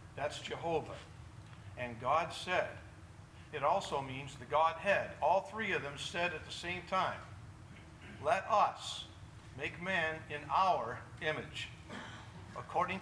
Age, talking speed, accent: 50-69, 125 wpm, American